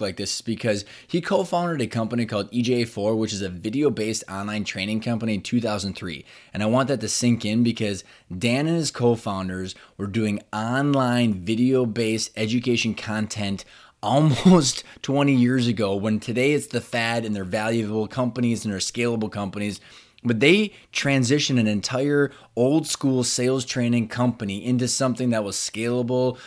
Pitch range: 110-130 Hz